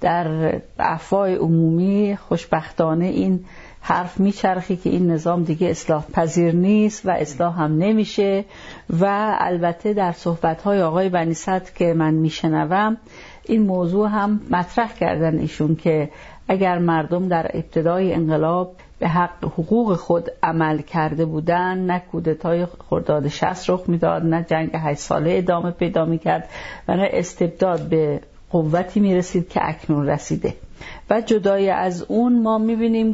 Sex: female